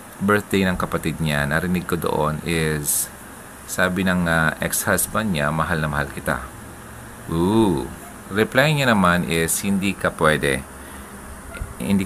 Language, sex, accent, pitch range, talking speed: Filipino, male, native, 80-105 Hz, 130 wpm